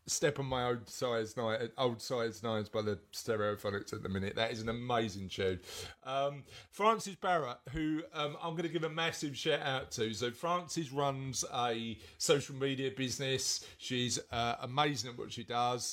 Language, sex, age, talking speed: English, male, 40-59, 180 wpm